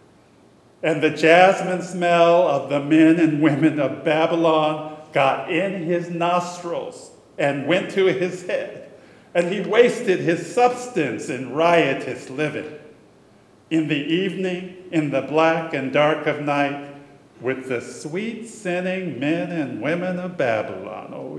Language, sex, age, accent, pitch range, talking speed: English, male, 50-69, American, 150-180 Hz, 135 wpm